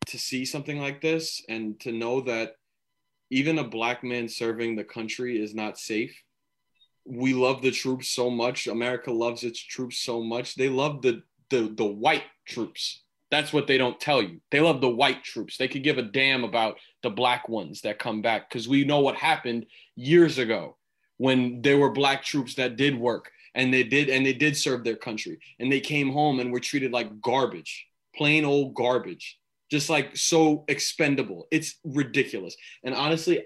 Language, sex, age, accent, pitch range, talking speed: English, male, 20-39, American, 125-145 Hz, 190 wpm